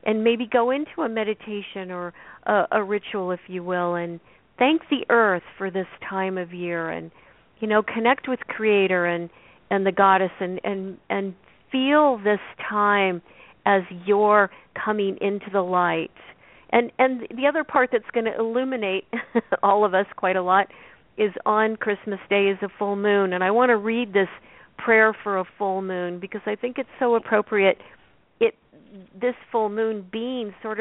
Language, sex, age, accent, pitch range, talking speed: English, female, 50-69, American, 190-225 Hz, 175 wpm